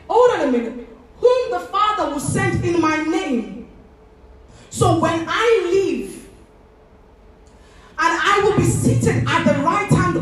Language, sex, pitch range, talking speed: English, female, 220-280 Hz, 145 wpm